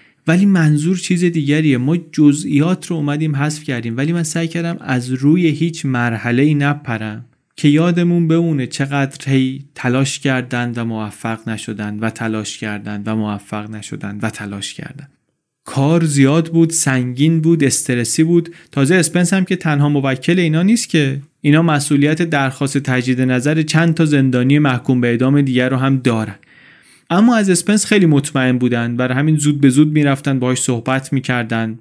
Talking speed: 160 wpm